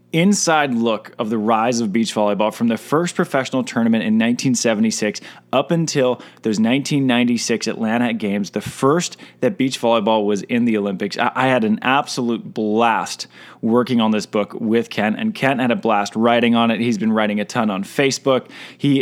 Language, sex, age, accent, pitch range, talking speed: English, male, 20-39, American, 110-130 Hz, 185 wpm